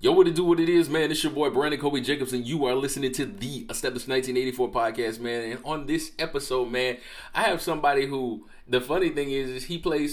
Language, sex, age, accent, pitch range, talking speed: English, male, 20-39, American, 105-135 Hz, 230 wpm